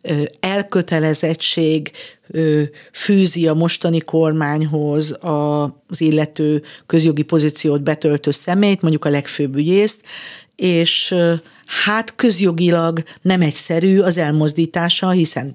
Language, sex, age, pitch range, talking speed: Hungarian, female, 50-69, 150-185 Hz, 90 wpm